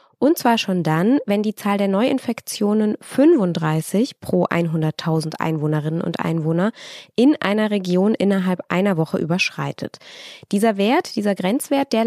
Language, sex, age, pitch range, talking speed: German, female, 20-39, 185-235 Hz, 135 wpm